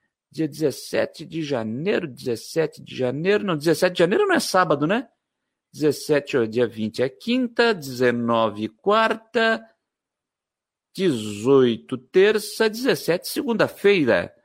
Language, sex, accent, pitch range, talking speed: Portuguese, male, Brazilian, 160-215 Hz, 110 wpm